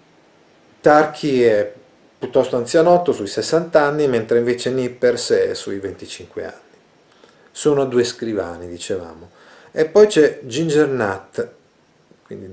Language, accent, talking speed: Italian, native, 115 wpm